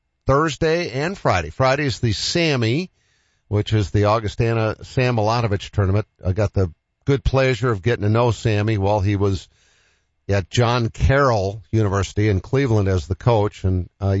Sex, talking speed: male, 160 wpm